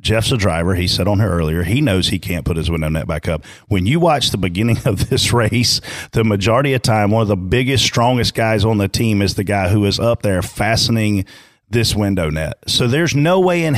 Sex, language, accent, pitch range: male, English, American, 100-130 Hz